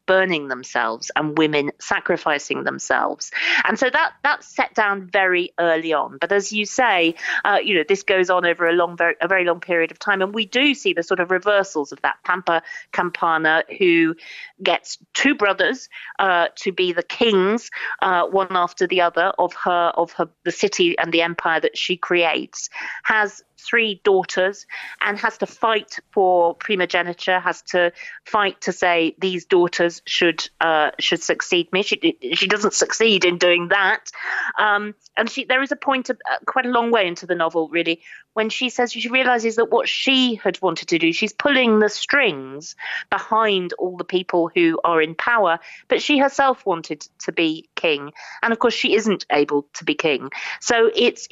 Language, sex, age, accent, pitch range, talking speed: English, female, 40-59, British, 170-230 Hz, 185 wpm